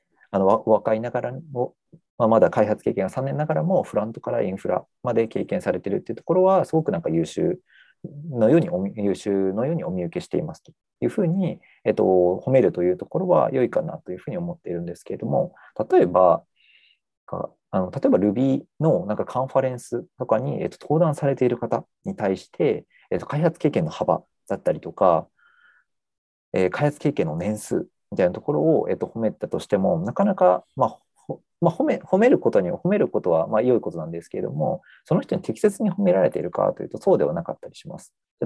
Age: 40-59